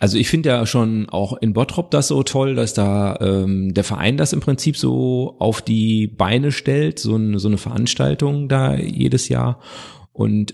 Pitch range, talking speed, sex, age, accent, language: 100-120 Hz, 190 wpm, male, 40-59, German, German